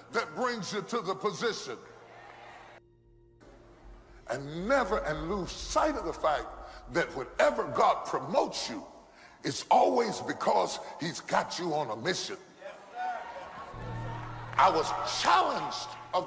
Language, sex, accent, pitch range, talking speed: English, female, American, 215-300 Hz, 120 wpm